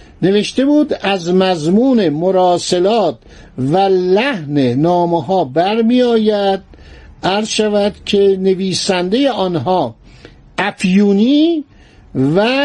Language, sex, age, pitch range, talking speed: Persian, male, 60-79, 150-205 Hz, 80 wpm